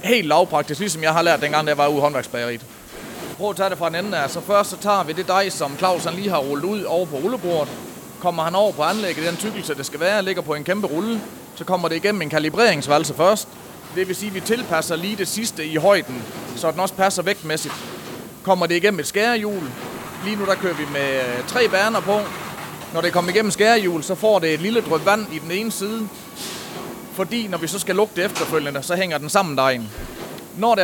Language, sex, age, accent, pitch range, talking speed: English, male, 30-49, Danish, 155-205 Hz, 230 wpm